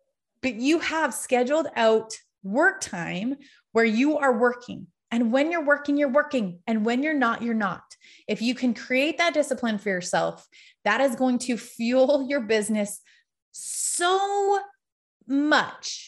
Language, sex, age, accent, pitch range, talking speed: English, female, 30-49, American, 215-275 Hz, 150 wpm